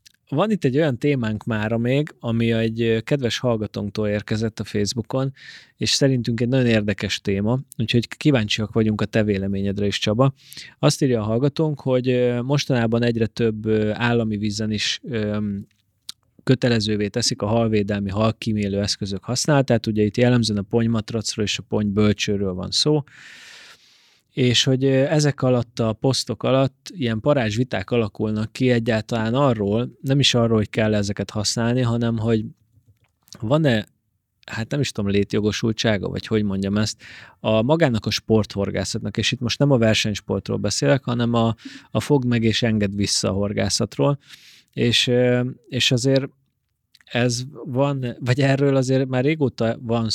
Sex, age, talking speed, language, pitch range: male, 20-39, 145 wpm, Hungarian, 105-130 Hz